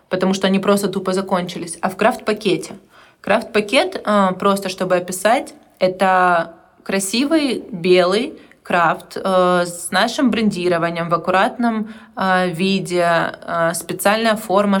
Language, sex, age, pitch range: Russian, female, 20-39, 180-205 Hz